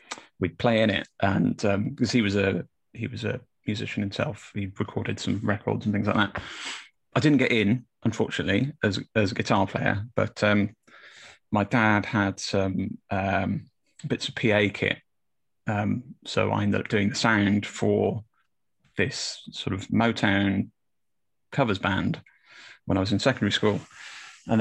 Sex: male